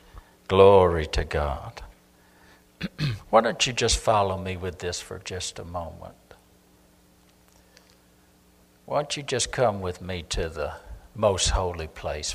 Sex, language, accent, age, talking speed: male, English, American, 60-79, 130 wpm